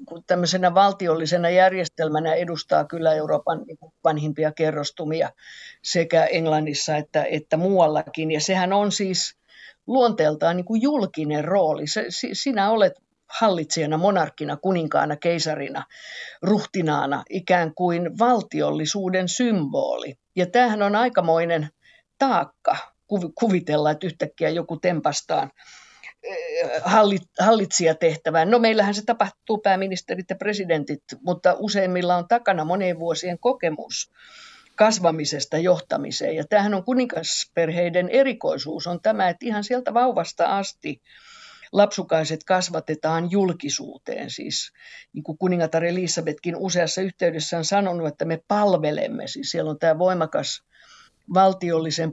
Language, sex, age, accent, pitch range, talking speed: Finnish, female, 50-69, native, 160-195 Hz, 110 wpm